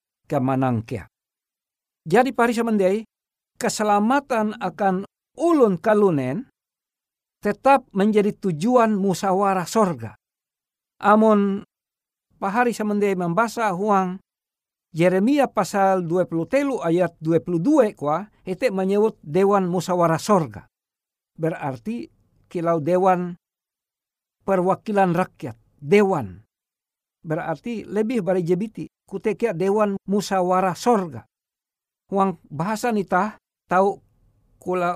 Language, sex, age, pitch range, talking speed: Indonesian, male, 60-79, 155-205 Hz, 80 wpm